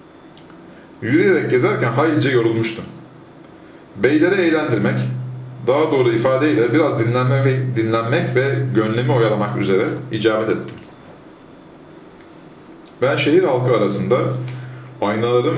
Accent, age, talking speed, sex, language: native, 40-59, 90 wpm, male, Turkish